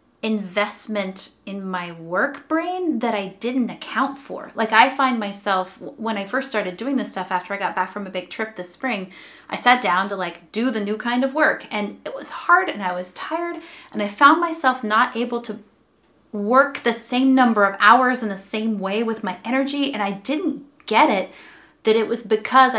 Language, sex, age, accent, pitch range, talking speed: English, female, 30-49, American, 195-245 Hz, 210 wpm